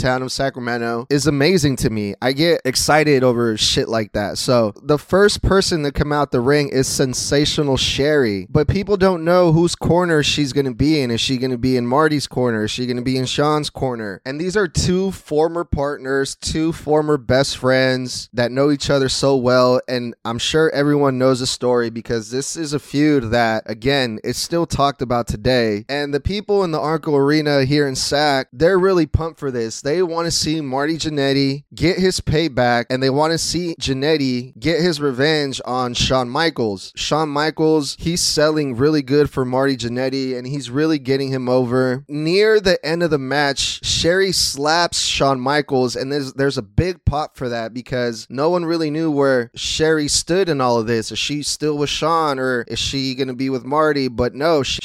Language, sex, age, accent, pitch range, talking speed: English, male, 20-39, American, 125-155 Hz, 200 wpm